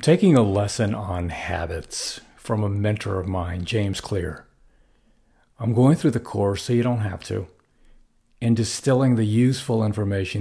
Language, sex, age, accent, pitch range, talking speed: English, male, 50-69, American, 100-125 Hz, 155 wpm